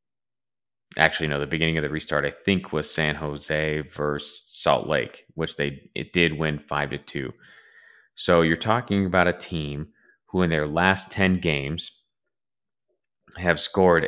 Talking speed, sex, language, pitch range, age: 160 wpm, male, English, 75-95 Hz, 30-49